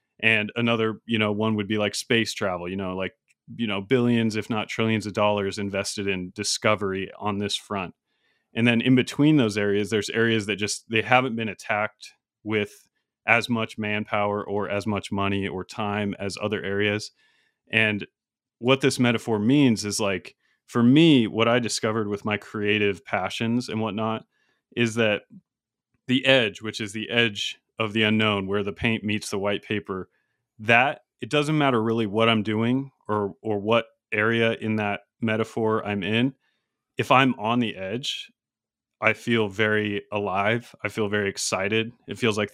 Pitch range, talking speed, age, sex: 105-115 Hz, 175 wpm, 30-49, male